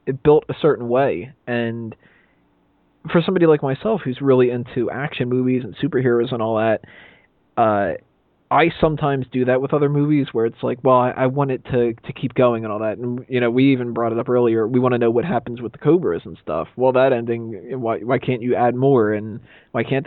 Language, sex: English, male